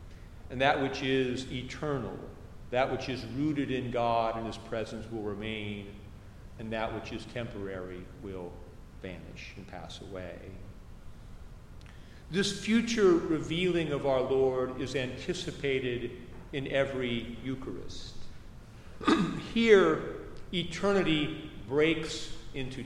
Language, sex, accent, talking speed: English, male, American, 110 wpm